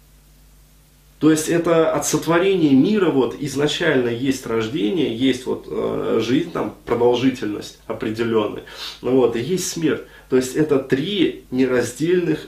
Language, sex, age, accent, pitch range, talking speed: Russian, male, 20-39, native, 120-190 Hz, 115 wpm